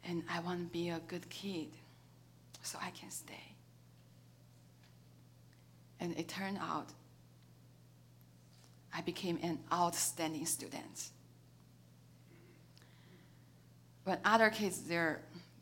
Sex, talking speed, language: female, 90 wpm, English